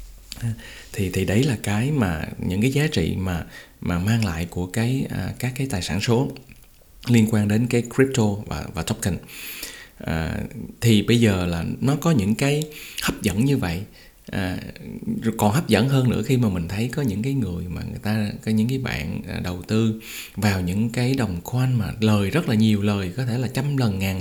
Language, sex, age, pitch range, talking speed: Vietnamese, male, 20-39, 100-125 Hz, 205 wpm